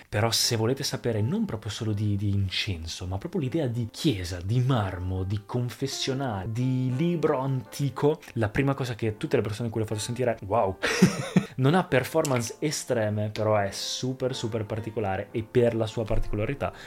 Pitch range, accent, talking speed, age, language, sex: 105-130 Hz, native, 180 wpm, 20-39, Italian, male